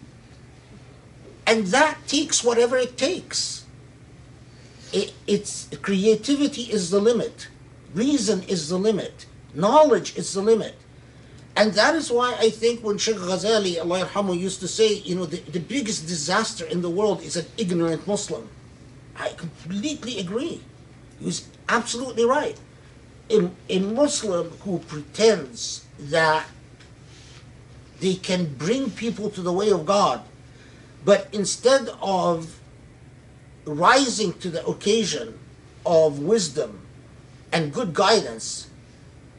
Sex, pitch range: male, 130-205 Hz